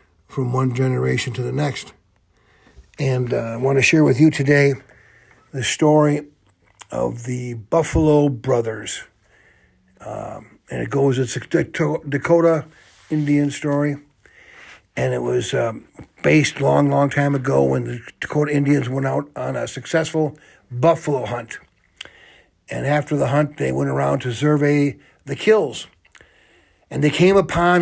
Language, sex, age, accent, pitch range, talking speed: English, male, 60-79, American, 125-150 Hz, 140 wpm